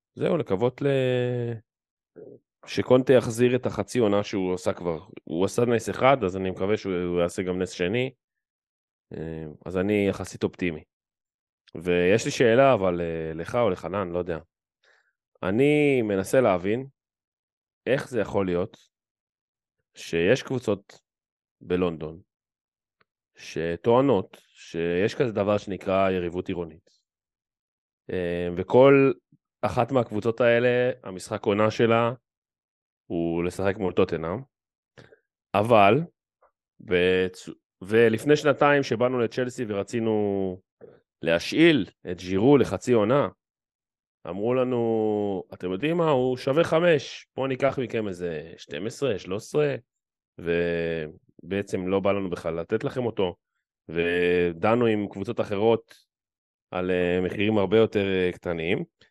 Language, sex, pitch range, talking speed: Hebrew, male, 90-120 Hz, 100 wpm